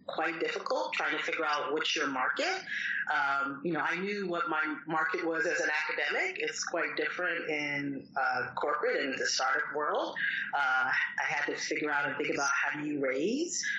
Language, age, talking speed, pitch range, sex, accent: English, 30-49, 190 wpm, 140-220 Hz, female, American